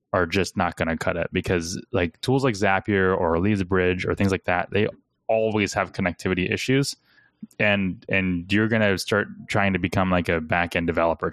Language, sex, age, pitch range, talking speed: English, male, 10-29, 90-110 Hz, 190 wpm